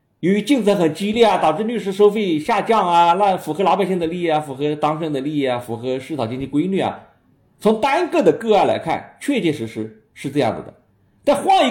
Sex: male